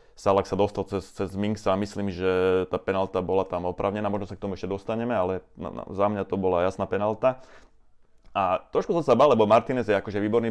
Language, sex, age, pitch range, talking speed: Slovak, male, 30-49, 95-110 Hz, 225 wpm